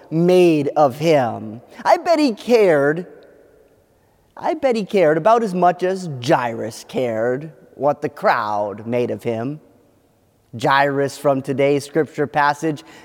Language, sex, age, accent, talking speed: English, male, 30-49, American, 130 wpm